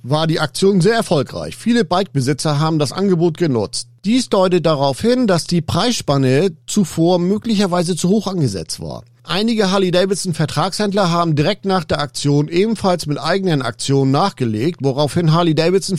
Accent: German